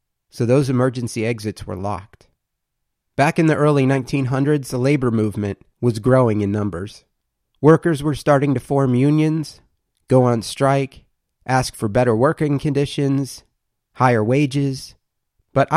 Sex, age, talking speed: male, 30-49, 135 wpm